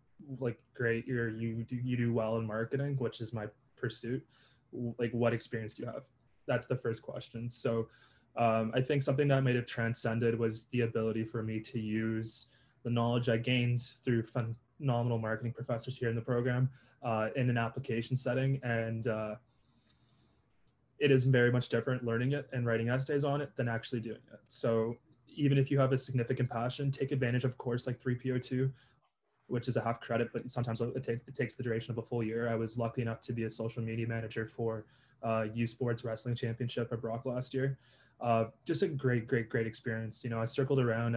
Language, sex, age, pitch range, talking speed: English, male, 20-39, 115-130 Hz, 205 wpm